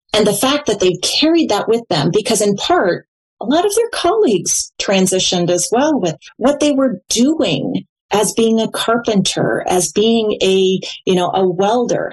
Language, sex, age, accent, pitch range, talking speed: English, female, 30-49, American, 180-250 Hz, 180 wpm